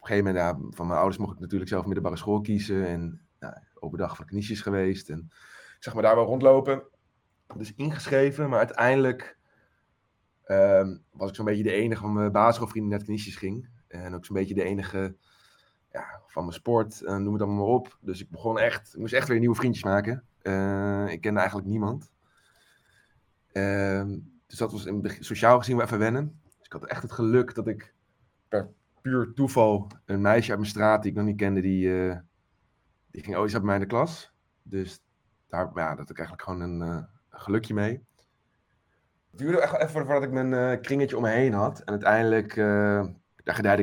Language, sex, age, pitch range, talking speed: Dutch, male, 20-39, 95-115 Hz, 205 wpm